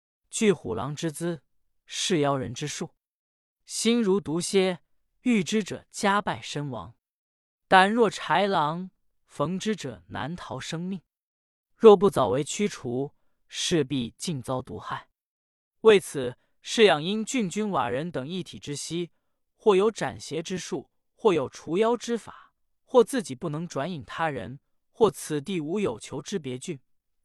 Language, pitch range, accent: Chinese, 145-210 Hz, native